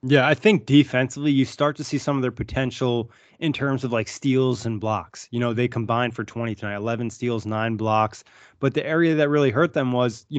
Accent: American